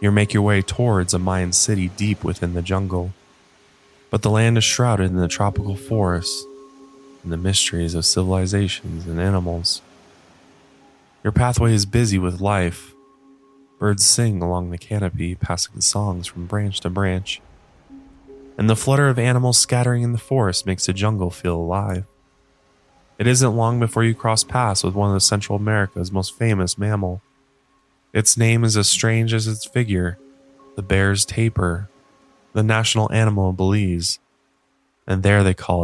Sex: male